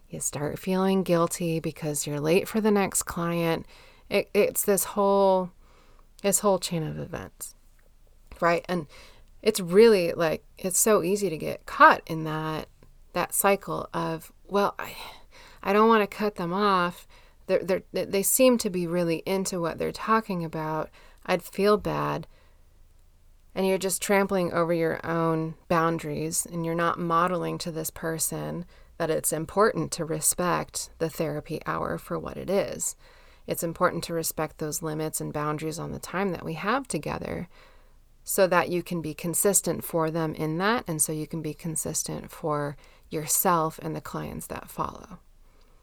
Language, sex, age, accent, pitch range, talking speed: English, female, 30-49, American, 160-190 Hz, 160 wpm